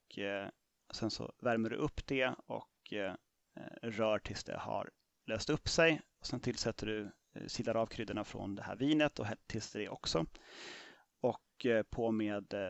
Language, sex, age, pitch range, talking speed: Swedish, male, 30-49, 105-125 Hz, 160 wpm